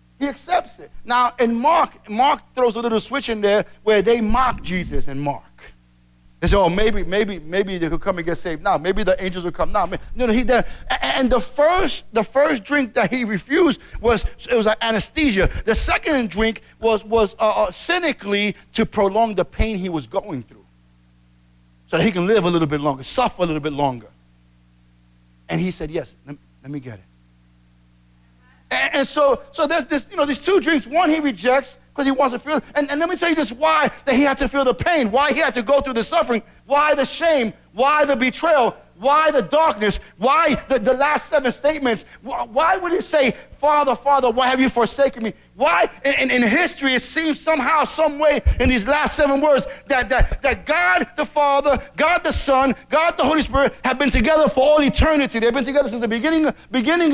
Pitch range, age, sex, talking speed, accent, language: 190-290 Hz, 50-69, male, 210 wpm, American, English